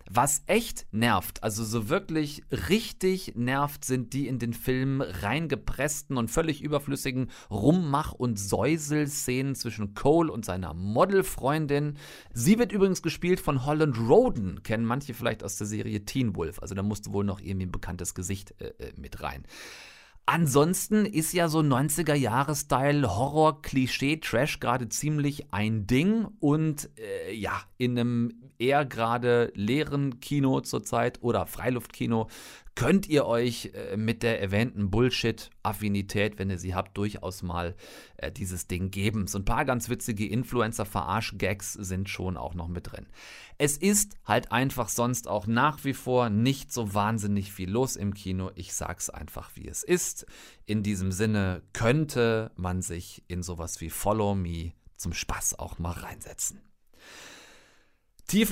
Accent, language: German, German